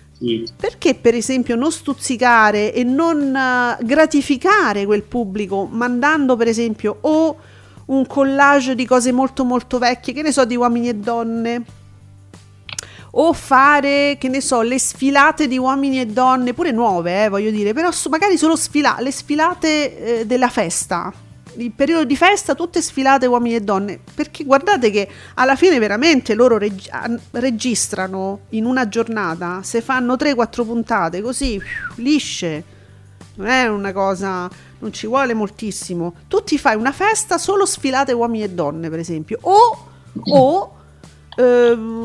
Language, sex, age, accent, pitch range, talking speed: Italian, female, 40-59, native, 210-275 Hz, 150 wpm